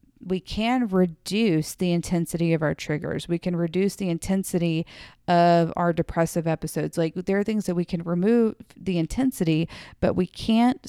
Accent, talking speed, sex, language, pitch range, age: American, 165 wpm, female, English, 170-210 Hz, 40-59